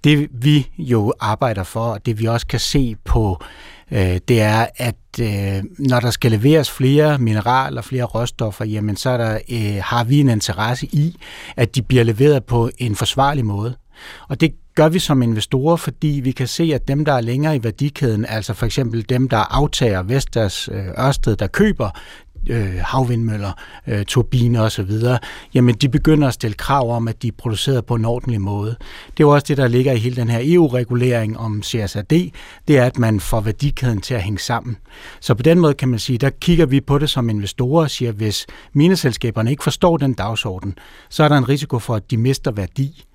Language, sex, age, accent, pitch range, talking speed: Danish, male, 60-79, native, 110-140 Hz, 205 wpm